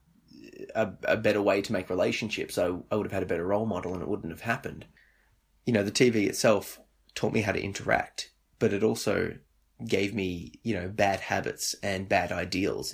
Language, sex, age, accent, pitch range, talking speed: English, male, 20-39, Australian, 80-105 Hz, 200 wpm